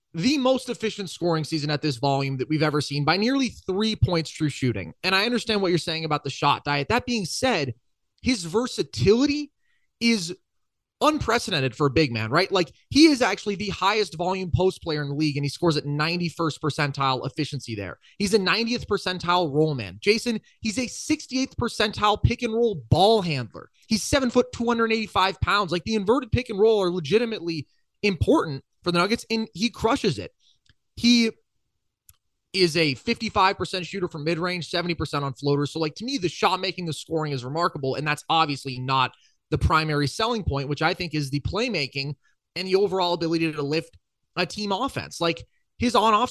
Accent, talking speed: American, 185 wpm